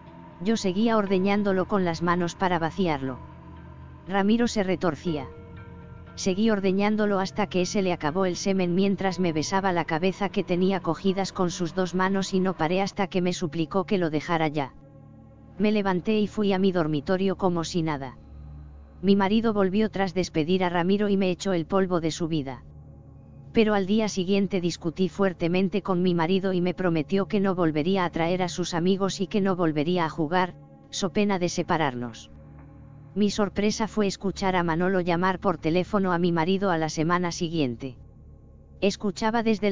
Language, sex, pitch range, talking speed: Spanish, female, 165-195 Hz, 175 wpm